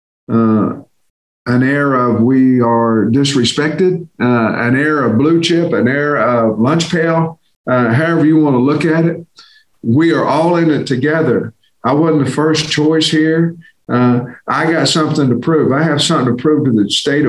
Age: 50-69